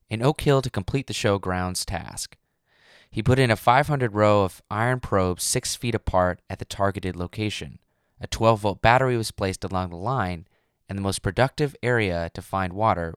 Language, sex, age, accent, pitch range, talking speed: English, male, 20-39, American, 90-115 Hz, 190 wpm